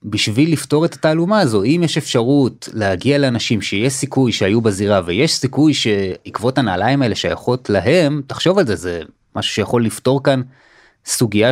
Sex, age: male, 20-39